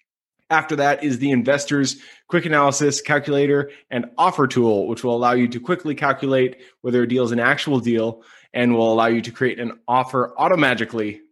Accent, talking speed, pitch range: American, 180 wpm, 130-155 Hz